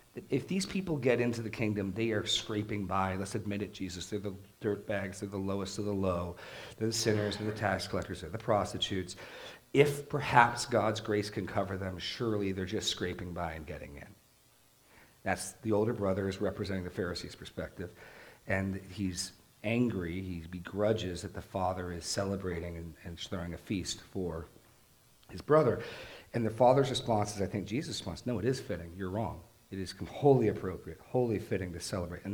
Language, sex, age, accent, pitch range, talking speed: English, male, 40-59, American, 90-110 Hz, 185 wpm